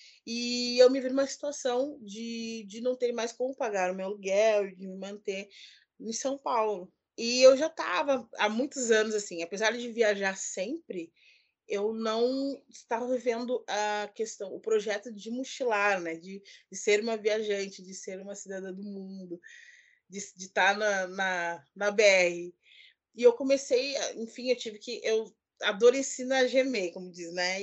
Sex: female